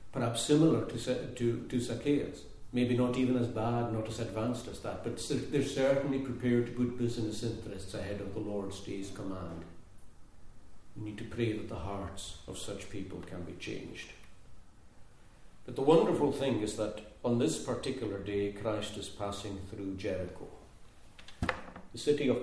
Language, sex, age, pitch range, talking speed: English, male, 50-69, 95-125 Hz, 160 wpm